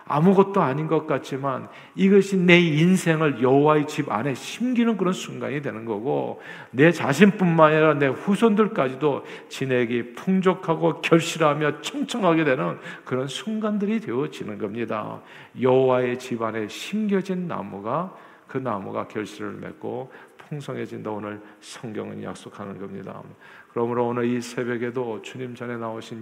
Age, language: 50-69, Korean